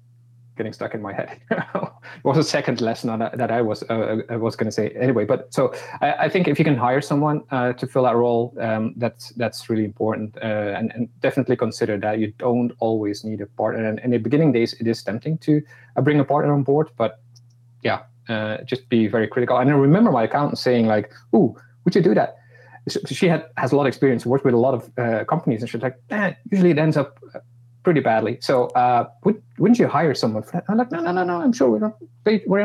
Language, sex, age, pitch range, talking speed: English, male, 30-49, 115-145 Hz, 245 wpm